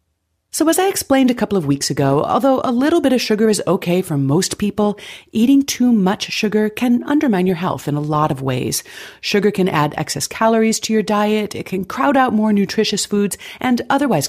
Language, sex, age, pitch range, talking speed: English, female, 40-59, 150-220 Hz, 210 wpm